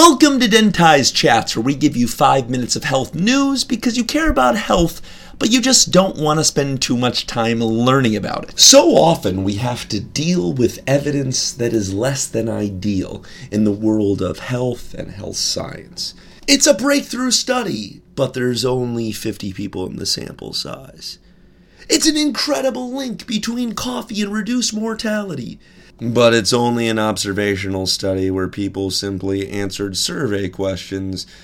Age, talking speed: 30-49, 165 wpm